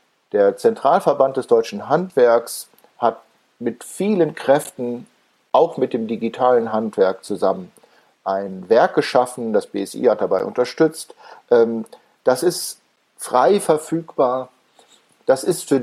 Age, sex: 50-69, male